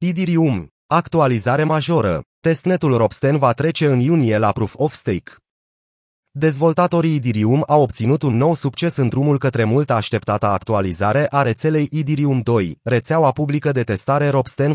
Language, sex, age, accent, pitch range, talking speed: Romanian, male, 30-49, native, 115-145 Hz, 140 wpm